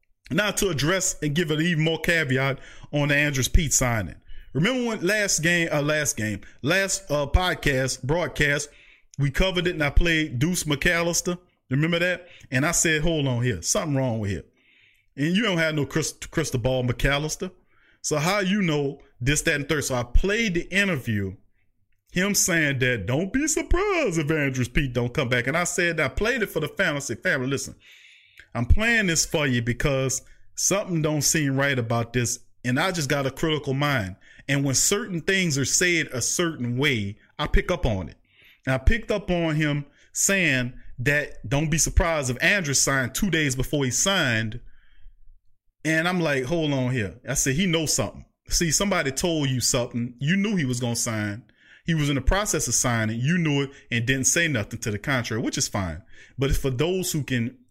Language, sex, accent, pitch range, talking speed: English, male, American, 125-170 Hz, 200 wpm